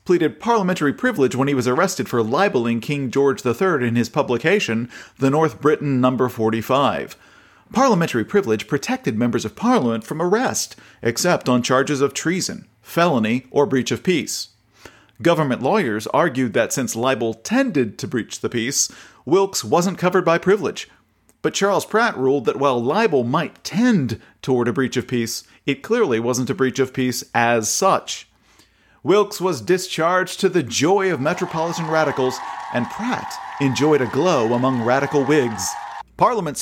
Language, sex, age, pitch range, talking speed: English, male, 40-59, 125-185 Hz, 155 wpm